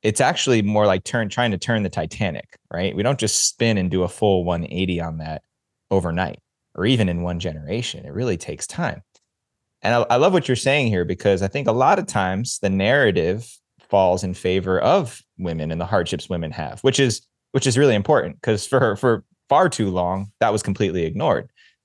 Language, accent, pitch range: English, American, 90-110 Hz